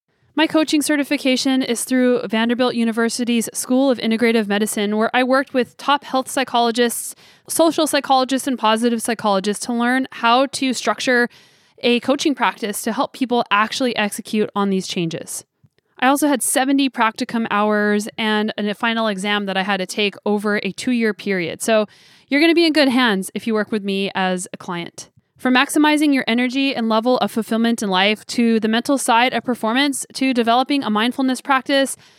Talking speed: 175 wpm